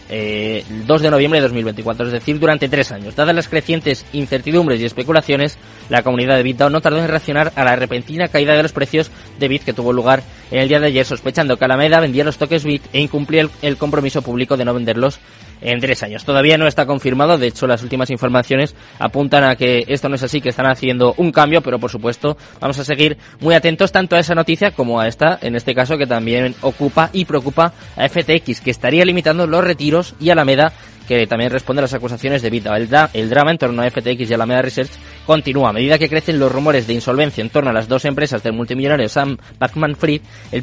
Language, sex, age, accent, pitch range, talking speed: Spanish, male, 20-39, Spanish, 125-155 Hz, 225 wpm